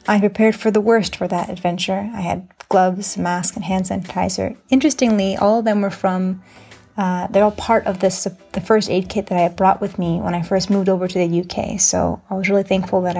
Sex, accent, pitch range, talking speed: female, American, 185-220 Hz, 230 wpm